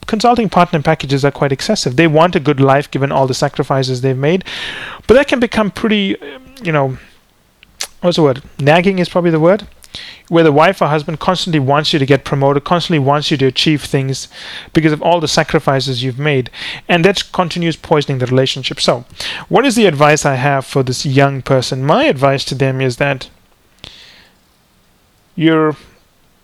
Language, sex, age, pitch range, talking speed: English, male, 30-49, 135-165 Hz, 180 wpm